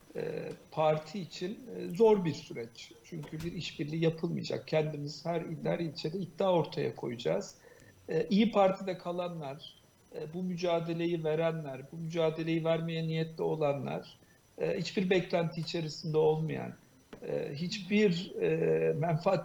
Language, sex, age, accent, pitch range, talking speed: Turkish, male, 50-69, native, 160-195 Hz, 100 wpm